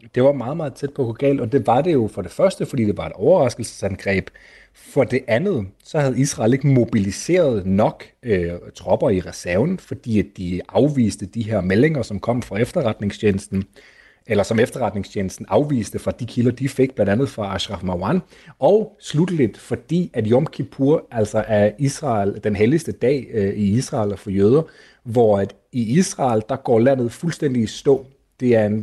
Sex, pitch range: male, 105-135 Hz